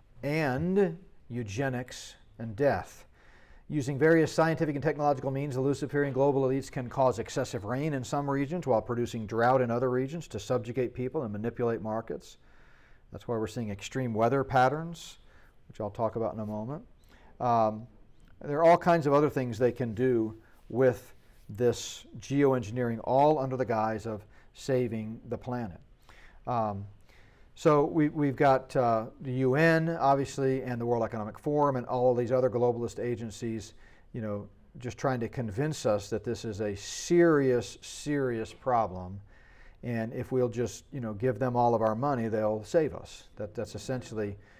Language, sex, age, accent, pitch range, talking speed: English, male, 40-59, American, 110-140 Hz, 160 wpm